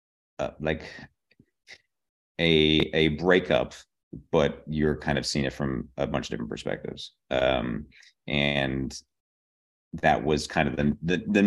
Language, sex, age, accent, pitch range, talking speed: English, male, 30-49, American, 70-80 Hz, 135 wpm